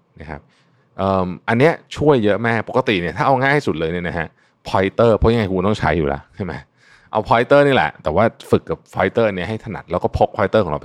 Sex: male